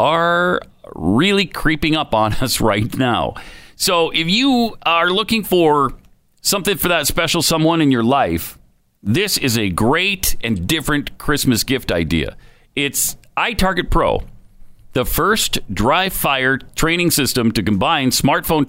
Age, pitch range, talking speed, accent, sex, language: 50-69, 110-155 Hz, 140 wpm, American, male, English